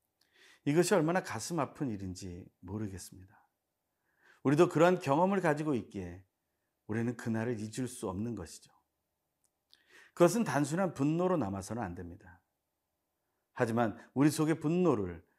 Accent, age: native, 40-59